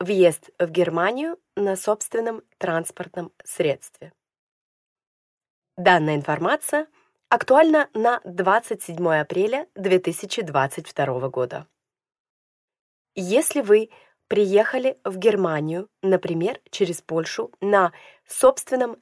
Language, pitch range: Russian, 180-230 Hz